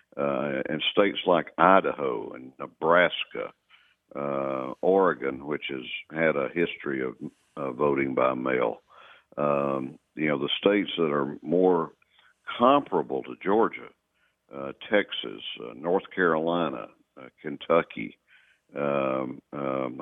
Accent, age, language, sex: American, 60-79, English, male